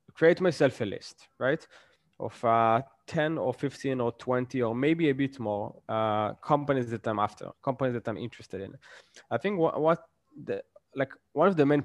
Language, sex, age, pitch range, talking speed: English, male, 20-39, 120-145 Hz, 185 wpm